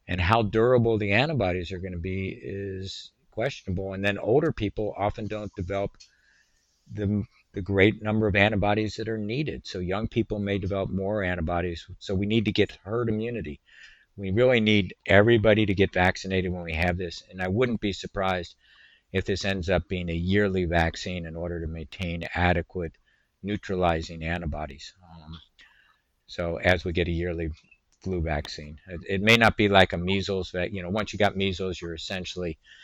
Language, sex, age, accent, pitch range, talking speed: English, male, 50-69, American, 90-105 Hz, 175 wpm